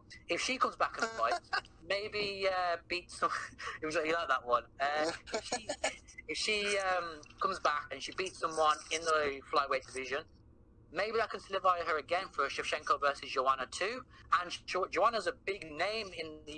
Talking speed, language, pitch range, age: 175 wpm, English, 130-170 Hz, 30-49